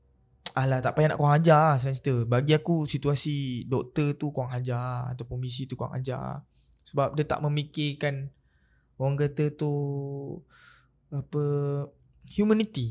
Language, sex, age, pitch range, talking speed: Malay, male, 20-39, 130-160 Hz, 135 wpm